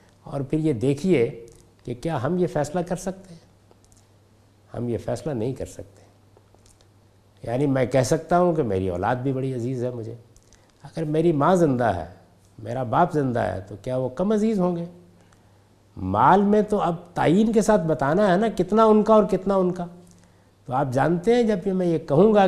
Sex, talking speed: male, 200 wpm